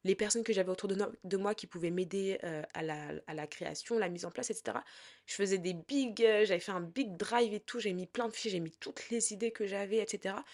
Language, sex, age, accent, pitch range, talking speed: French, female, 20-39, French, 175-225 Hz, 255 wpm